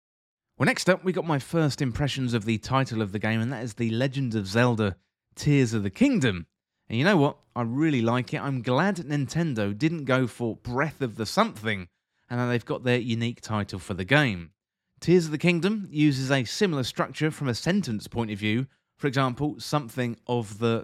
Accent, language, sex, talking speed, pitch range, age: British, English, male, 205 wpm, 110-150 Hz, 30-49